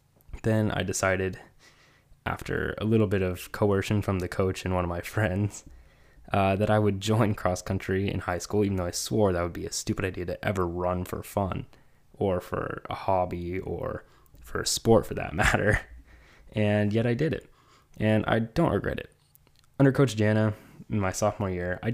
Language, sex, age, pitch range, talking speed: English, male, 20-39, 95-110 Hz, 195 wpm